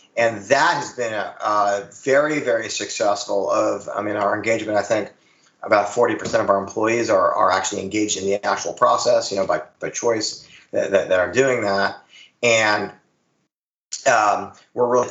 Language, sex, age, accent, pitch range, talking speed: English, male, 30-49, American, 105-135 Hz, 175 wpm